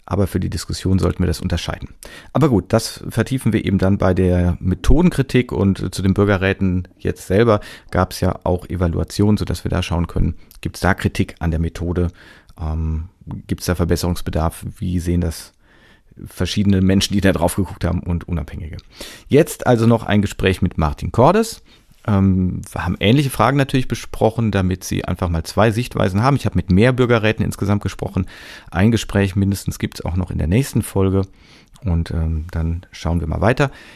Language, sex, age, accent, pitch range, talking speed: German, male, 40-59, German, 90-110 Hz, 185 wpm